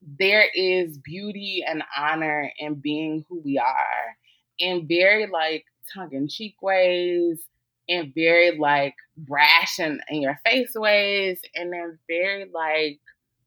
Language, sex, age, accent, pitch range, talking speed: English, female, 20-39, American, 140-175 Hz, 135 wpm